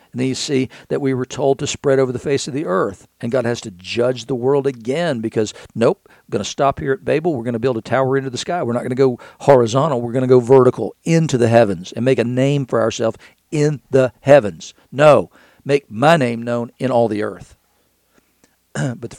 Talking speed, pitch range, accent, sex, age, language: 240 wpm, 115-135 Hz, American, male, 50-69, English